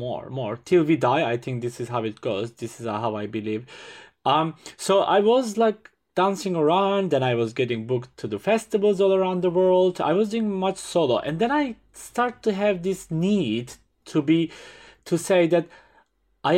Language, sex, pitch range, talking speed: English, male, 120-180 Hz, 200 wpm